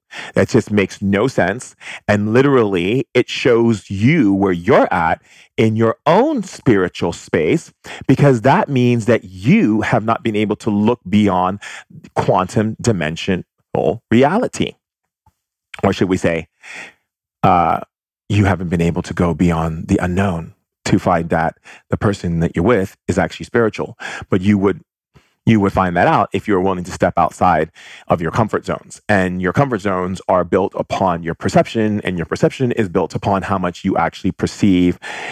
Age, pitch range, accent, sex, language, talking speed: 30-49, 90-115 Hz, American, male, English, 165 wpm